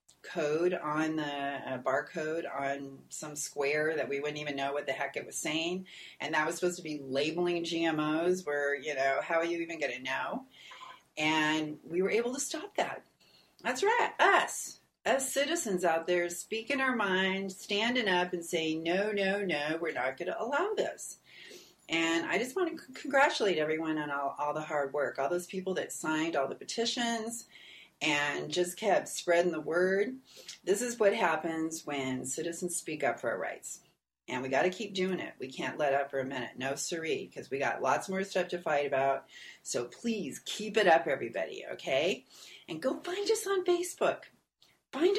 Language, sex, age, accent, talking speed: English, female, 40-59, American, 185 wpm